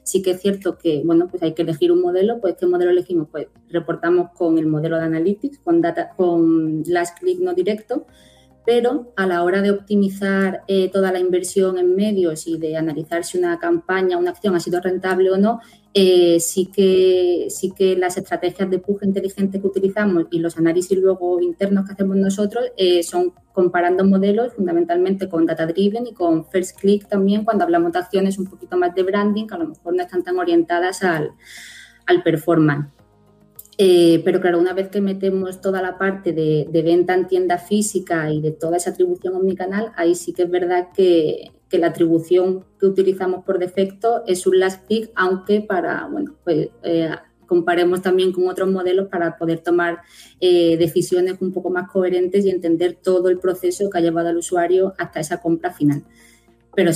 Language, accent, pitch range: Spanish, Spanish, 175-195 Hz